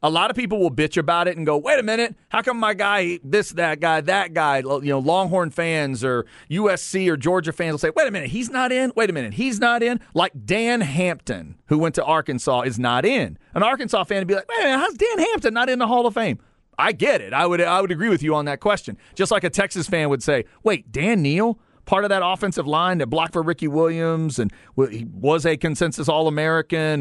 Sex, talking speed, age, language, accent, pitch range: male, 240 wpm, 40-59, English, American, 155-220 Hz